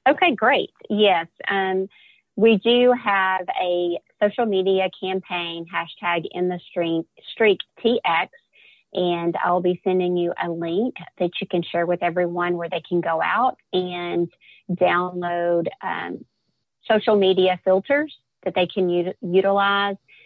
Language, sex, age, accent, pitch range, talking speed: English, female, 30-49, American, 175-200 Hz, 135 wpm